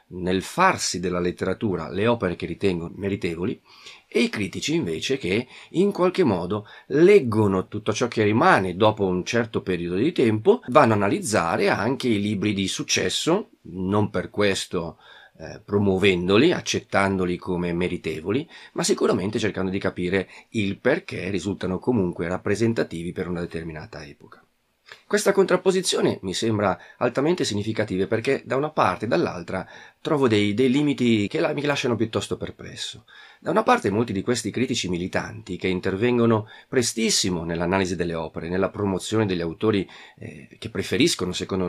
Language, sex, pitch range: Italian, male, 90-120 Hz